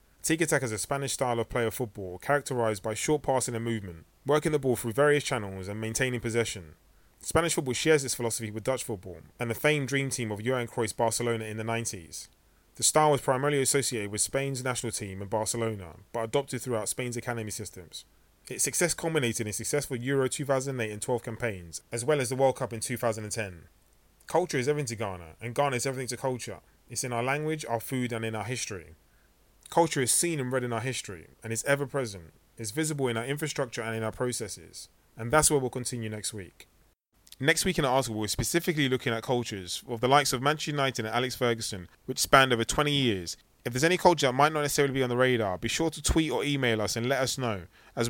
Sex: male